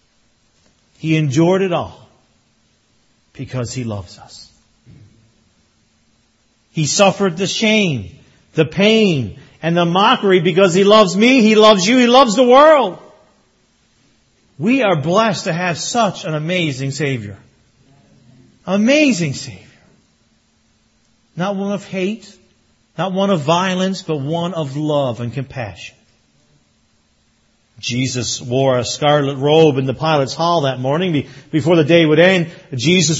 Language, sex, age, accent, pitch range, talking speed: English, male, 50-69, American, 135-205 Hz, 125 wpm